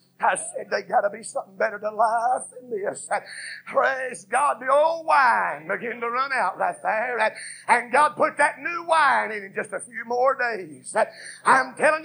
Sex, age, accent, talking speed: male, 50-69, American, 180 wpm